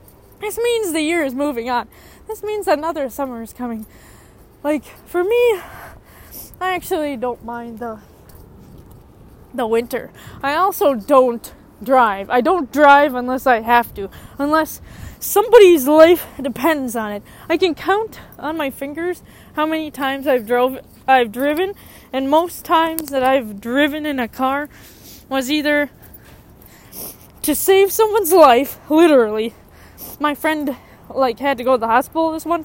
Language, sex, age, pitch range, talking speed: English, female, 20-39, 255-330 Hz, 145 wpm